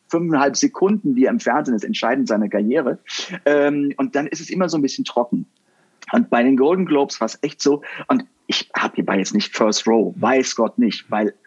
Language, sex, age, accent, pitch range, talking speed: German, male, 50-69, German, 145-240 Hz, 215 wpm